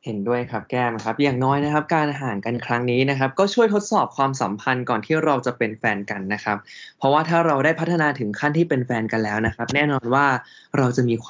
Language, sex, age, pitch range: Thai, male, 20-39, 110-150 Hz